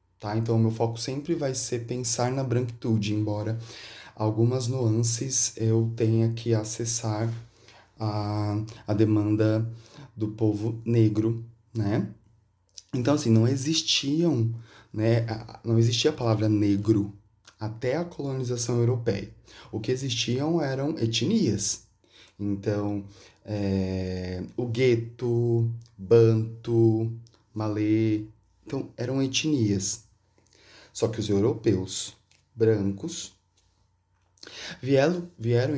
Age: 20-39